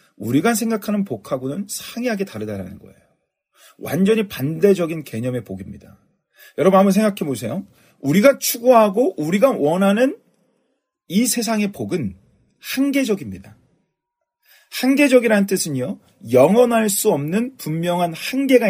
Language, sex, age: Korean, male, 40-59